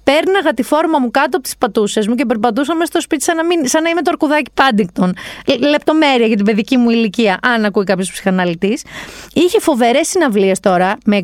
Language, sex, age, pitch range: Greek, female, 30-49, 205-275 Hz